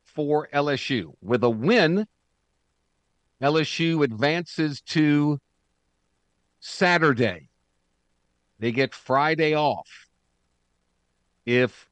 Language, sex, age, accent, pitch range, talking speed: English, male, 50-69, American, 95-140 Hz, 70 wpm